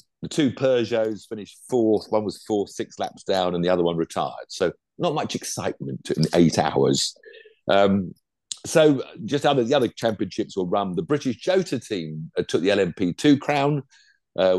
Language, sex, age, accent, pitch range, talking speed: English, male, 50-69, British, 95-155 Hz, 175 wpm